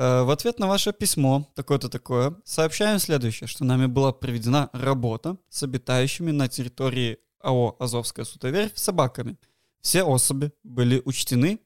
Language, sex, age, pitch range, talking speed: Russian, male, 20-39, 130-190 Hz, 135 wpm